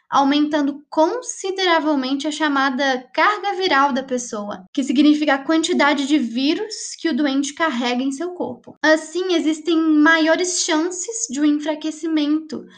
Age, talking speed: 10-29, 130 wpm